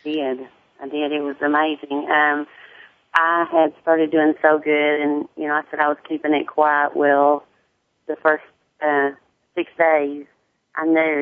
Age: 30-49